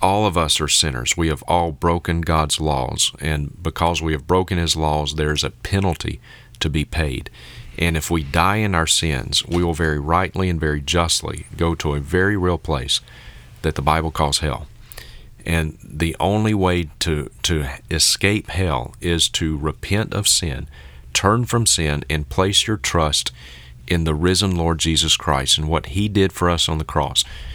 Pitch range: 75-95 Hz